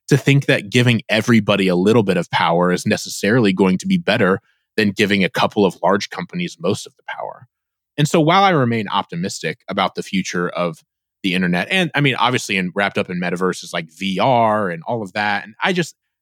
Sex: male